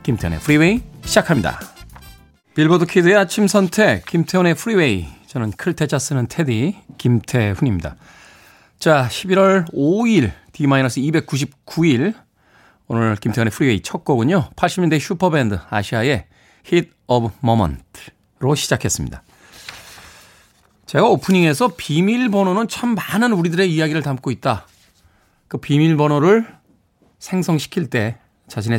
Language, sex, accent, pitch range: Korean, male, native, 115-180 Hz